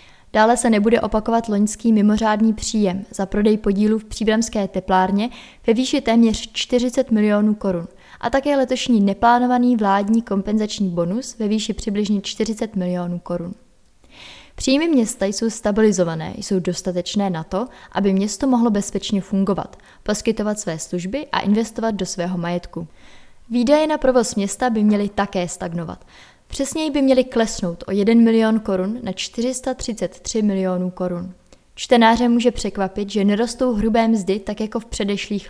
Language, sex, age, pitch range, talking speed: Czech, female, 20-39, 195-235 Hz, 140 wpm